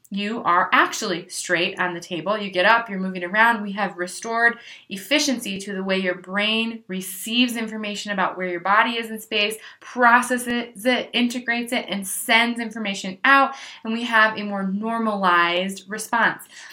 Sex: female